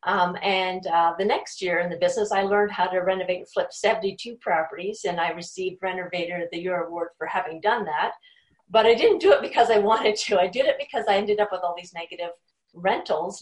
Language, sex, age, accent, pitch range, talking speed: English, female, 40-59, American, 175-220 Hz, 230 wpm